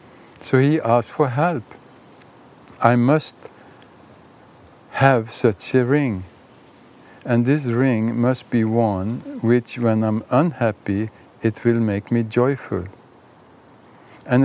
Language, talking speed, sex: English, 110 wpm, male